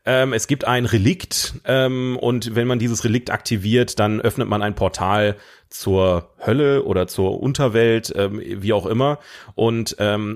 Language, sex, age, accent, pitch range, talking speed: German, male, 30-49, German, 105-130 Hz, 160 wpm